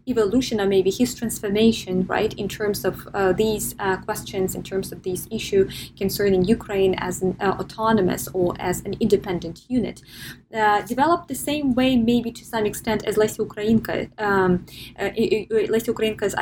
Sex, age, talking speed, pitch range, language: female, 20-39, 165 wpm, 190-230 Hz, English